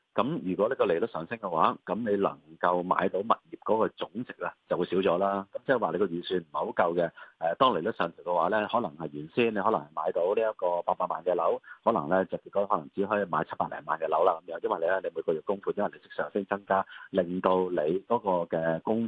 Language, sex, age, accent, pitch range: Chinese, male, 30-49, native, 85-115 Hz